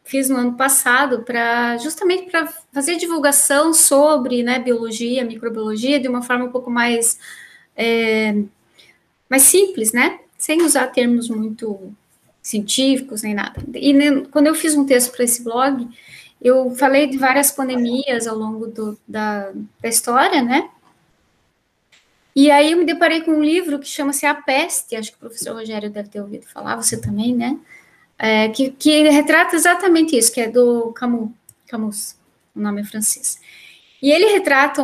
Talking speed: 160 wpm